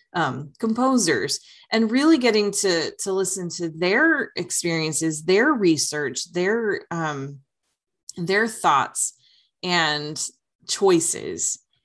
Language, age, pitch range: English, 20-39, 160-210 Hz